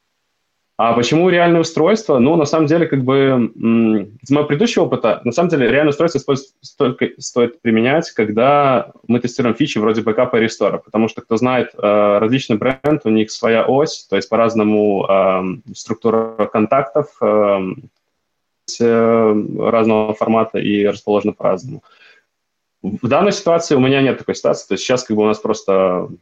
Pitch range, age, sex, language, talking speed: 105-130 Hz, 20-39, male, Ukrainian, 155 wpm